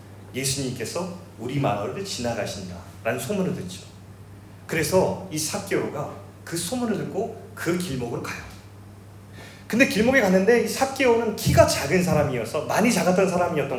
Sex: male